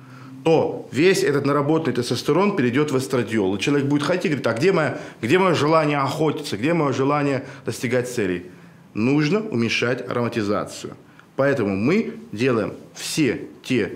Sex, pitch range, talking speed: male, 125-160 Hz, 145 wpm